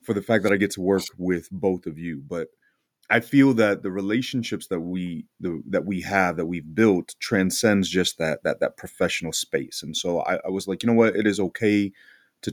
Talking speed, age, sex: 220 wpm, 30-49, male